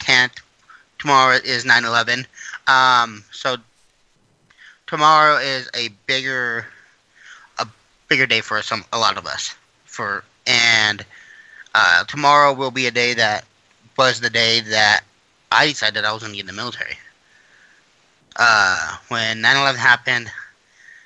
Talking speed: 135 wpm